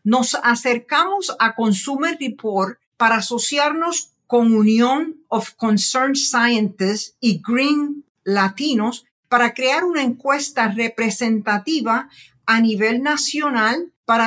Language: English